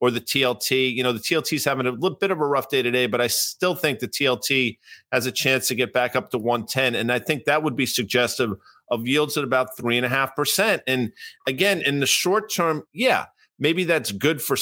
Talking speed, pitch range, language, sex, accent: 225 wpm, 120-150 Hz, English, male, American